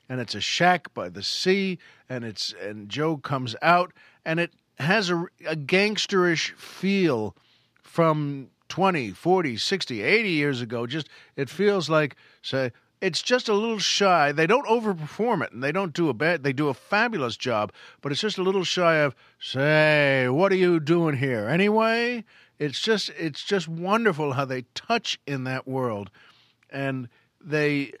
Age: 50-69